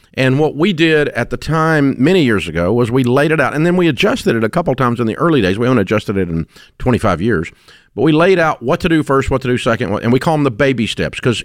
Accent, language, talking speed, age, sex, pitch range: American, English, 285 wpm, 50-69, male, 110-155 Hz